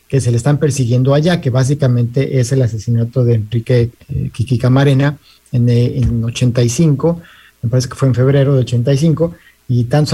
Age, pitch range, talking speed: 50-69, 125-155 Hz, 170 wpm